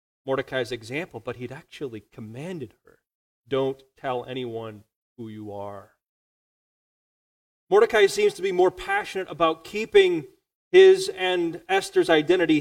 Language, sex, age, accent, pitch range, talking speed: English, male, 30-49, American, 120-180 Hz, 120 wpm